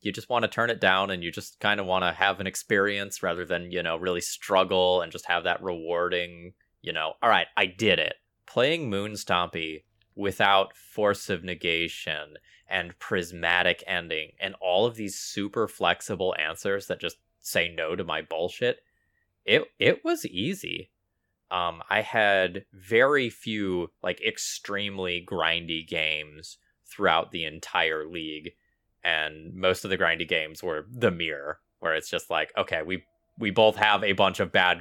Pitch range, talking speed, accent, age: 90-115 Hz, 165 wpm, American, 20-39